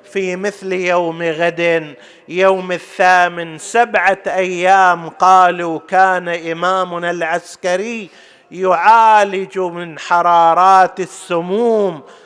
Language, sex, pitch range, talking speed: Arabic, male, 180-205 Hz, 80 wpm